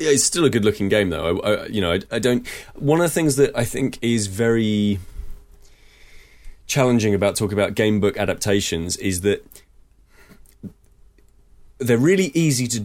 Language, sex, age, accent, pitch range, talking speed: English, male, 30-49, British, 85-110 Hz, 155 wpm